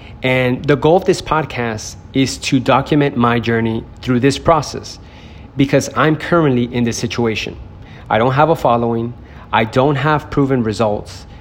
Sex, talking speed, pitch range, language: male, 160 wpm, 110-135 Hz, English